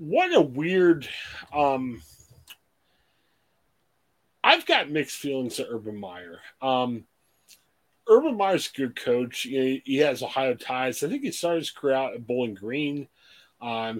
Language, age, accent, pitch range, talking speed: English, 30-49, American, 120-165 Hz, 140 wpm